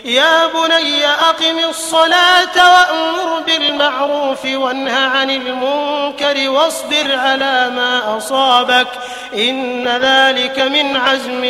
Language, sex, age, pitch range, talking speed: Arabic, male, 30-49, 250-290 Hz, 90 wpm